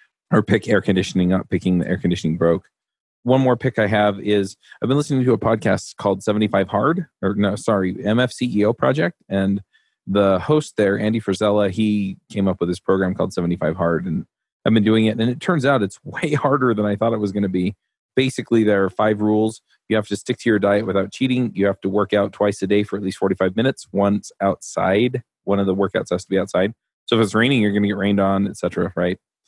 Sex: male